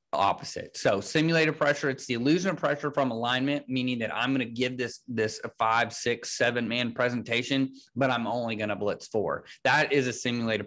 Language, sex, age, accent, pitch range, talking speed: English, male, 30-49, American, 115-140 Hz, 200 wpm